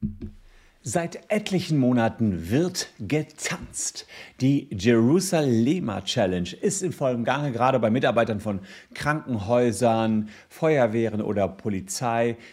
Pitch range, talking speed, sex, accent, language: 110-150 Hz, 95 wpm, male, German, German